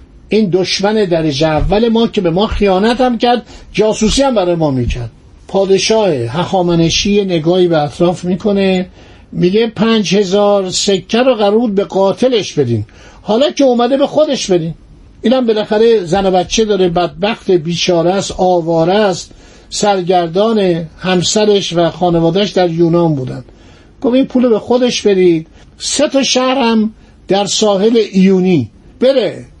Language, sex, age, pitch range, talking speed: Persian, male, 60-79, 170-225 Hz, 135 wpm